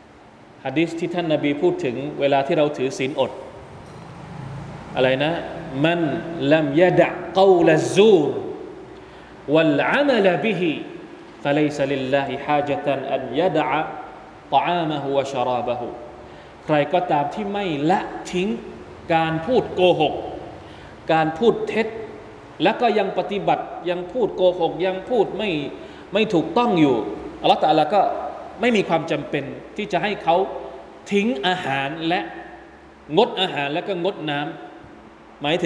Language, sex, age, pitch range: Thai, male, 20-39, 155-210 Hz